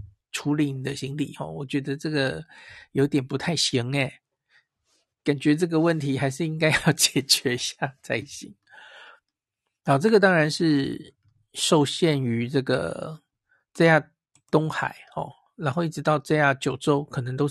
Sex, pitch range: male, 135-165 Hz